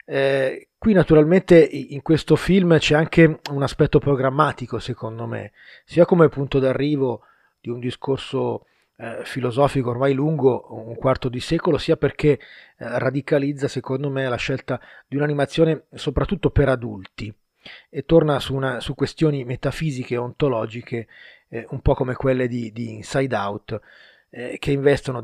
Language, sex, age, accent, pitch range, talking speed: Italian, male, 30-49, native, 120-150 Hz, 140 wpm